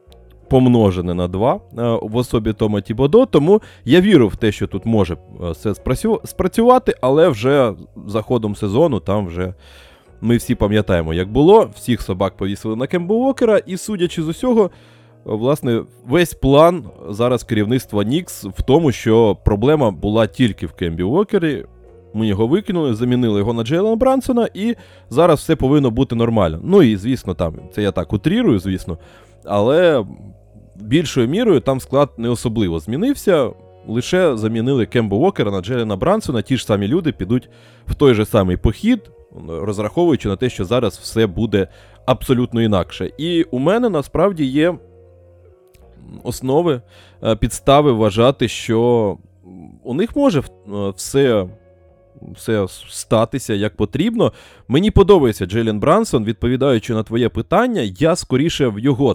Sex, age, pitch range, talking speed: male, 20-39, 100-145 Hz, 140 wpm